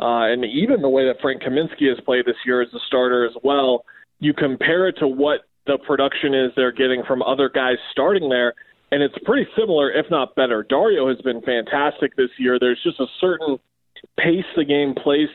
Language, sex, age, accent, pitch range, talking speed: English, male, 20-39, American, 125-145 Hz, 205 wpm